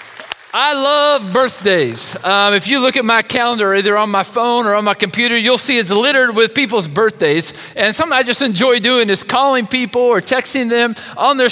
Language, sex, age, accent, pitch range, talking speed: English, male, 40-59, American, 200-260 Hz, 205 wpm